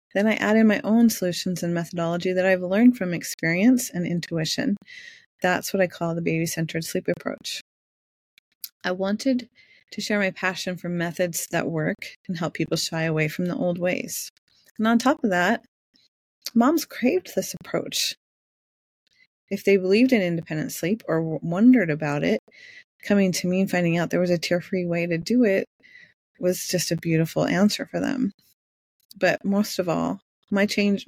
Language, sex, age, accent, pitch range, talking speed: English, female, 30-49, American, 170-210 Hz, 170 wpm